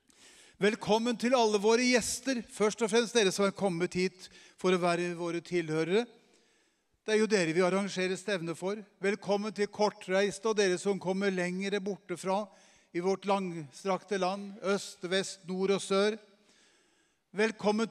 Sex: male